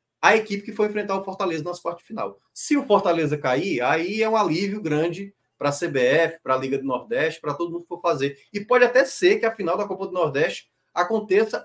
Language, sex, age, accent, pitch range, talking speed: Portuguese, male, 20-39, Brazilian, 145-185 Hz, 230 wpm